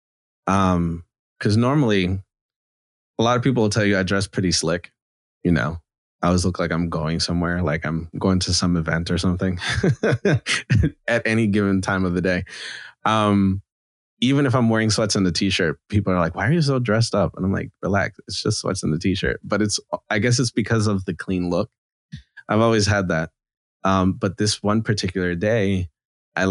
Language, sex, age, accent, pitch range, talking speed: English, male, 20-39, American, 85-105 Hz, 195 wpm